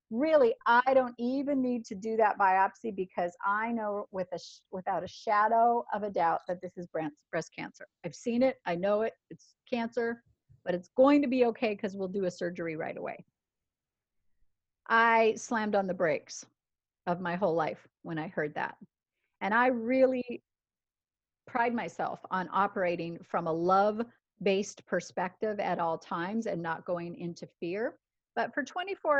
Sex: female